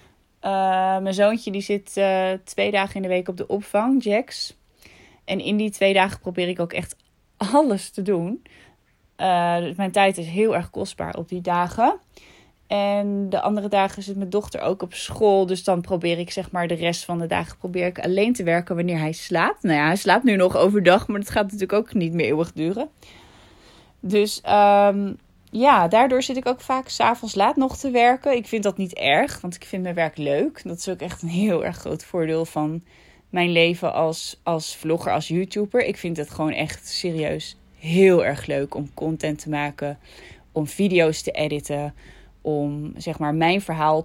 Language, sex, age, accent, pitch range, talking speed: Dutch, female, 20-39, Dutch, 155-200 Hz, 195 wpm